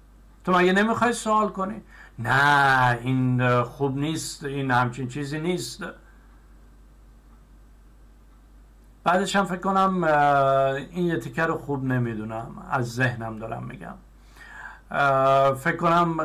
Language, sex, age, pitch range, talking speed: Persian, male, 50-69, 135-175 Hz, 105 wpm